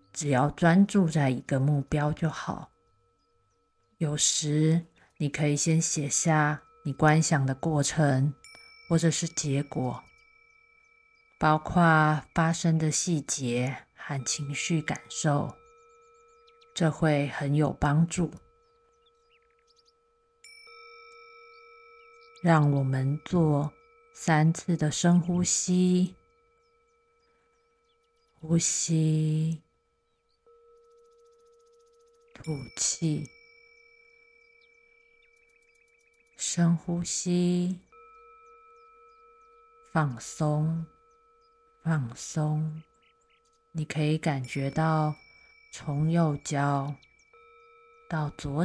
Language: Chinese